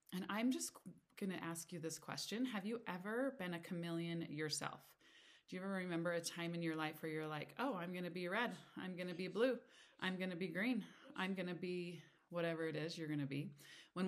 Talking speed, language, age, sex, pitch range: 215 wpm, English, 20-39, female, 160-195 Hz